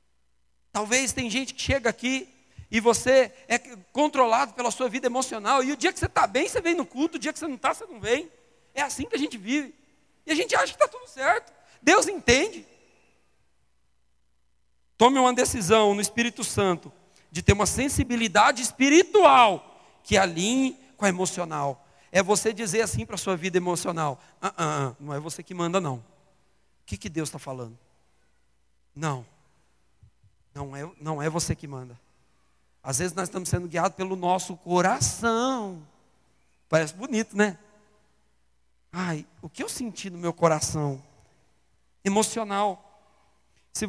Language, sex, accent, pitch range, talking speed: Portuguese, male, Brazilian, 150-230 Hz, 160 wpm